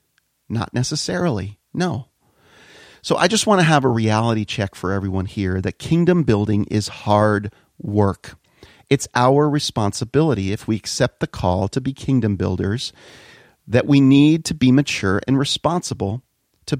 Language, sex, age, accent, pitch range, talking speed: English, male, 40-59, American, 105-140 Hz, 150 wpm